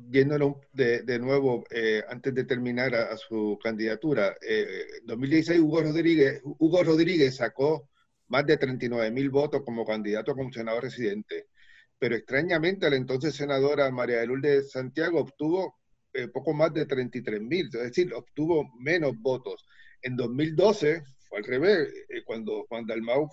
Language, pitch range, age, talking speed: Spanish, 125-160 Hz, 40-59, 145 wpm